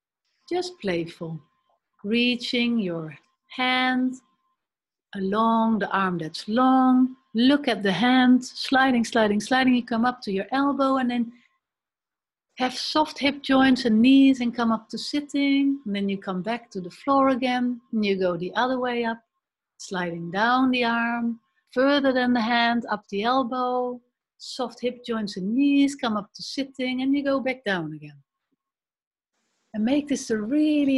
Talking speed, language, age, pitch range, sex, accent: 160 wpm, English, 60-79, 215-270 Hz, female, Dutch